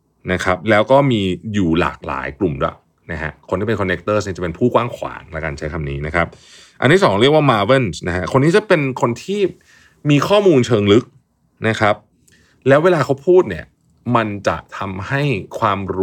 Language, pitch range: Thai, 85-120 Hz